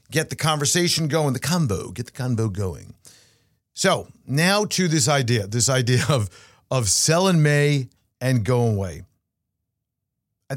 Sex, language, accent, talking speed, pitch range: male, English, American, 140 wpm, 110-155 Hz